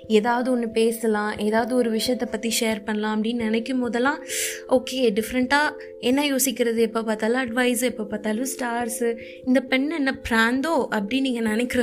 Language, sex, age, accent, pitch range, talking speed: Tamil, female, 20-39, native, 225-260 Hz, 145 wpm